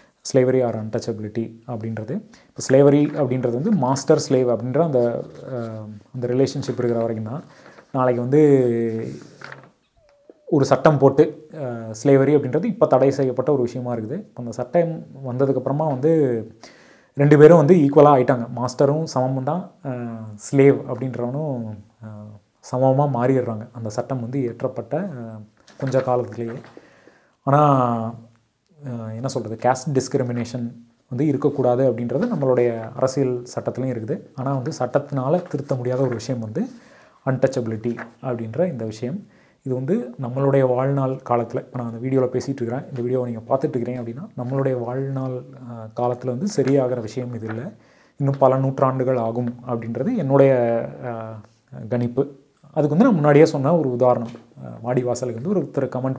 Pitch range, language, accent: 120-140 Hz, Tamil, native